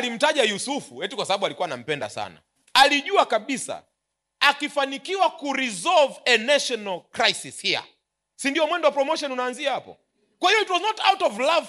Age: 40-59